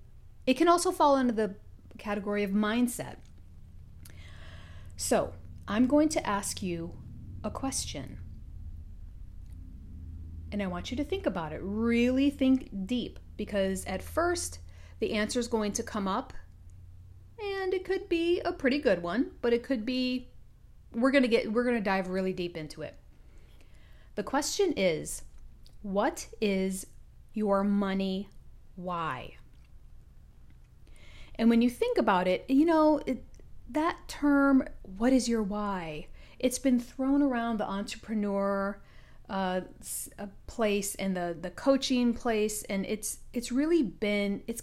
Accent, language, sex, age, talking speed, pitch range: American, English, female, 40-59, 140 wpm, 175-250 Hz